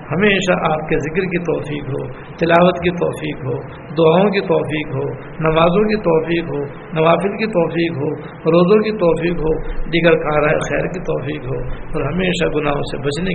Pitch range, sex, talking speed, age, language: 150-180 Hz, male, 170 wpm, 60-79, Urdu